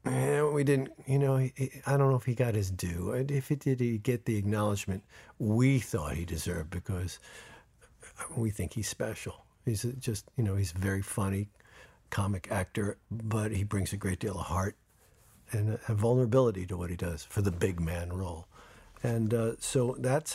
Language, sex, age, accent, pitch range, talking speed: English, male, 50-69, American, 100-125 Hz, 185 wpm